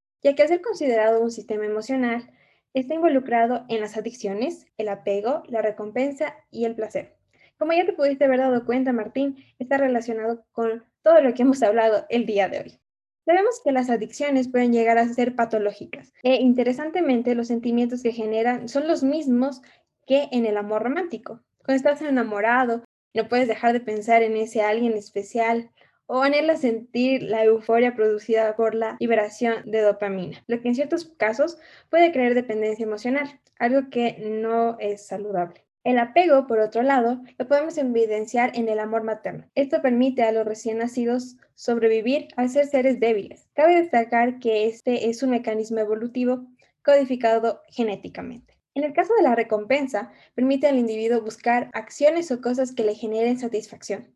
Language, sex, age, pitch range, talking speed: Spanish, female, 10-29, 225-270 Hz, 165 wpm